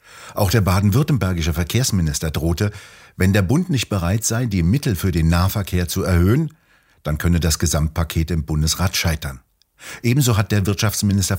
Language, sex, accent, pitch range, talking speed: German, male, German, 85-110 Hz, 155 wpm